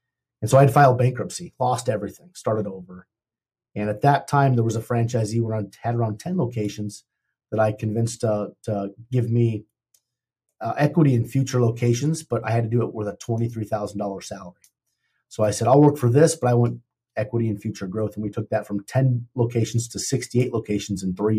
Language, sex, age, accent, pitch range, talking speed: English, male, 30-49, American, 105-125 Hz, 200 wpm